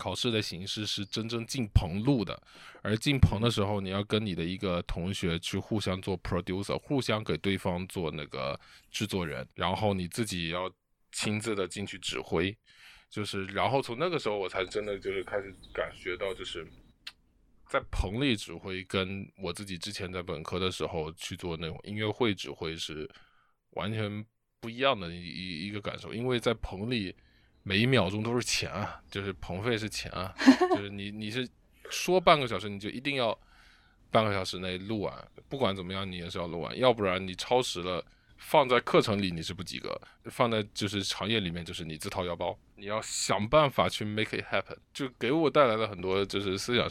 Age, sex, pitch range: 20-39, male, 90-110 Hz